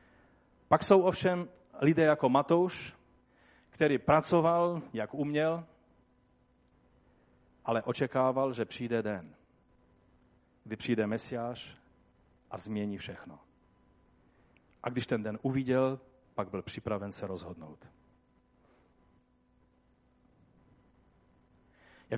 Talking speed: 85 wpm